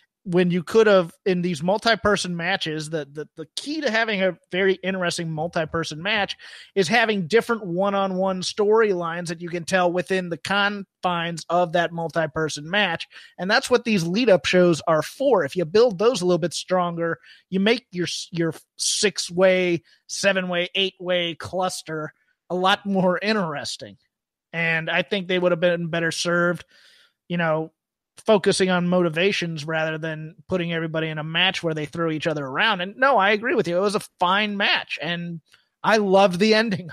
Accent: American